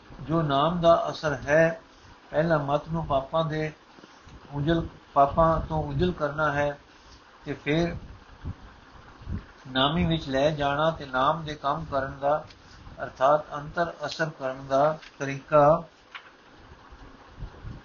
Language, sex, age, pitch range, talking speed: Punjabi, male, 50-69, 135-160 Hz, 115 wpm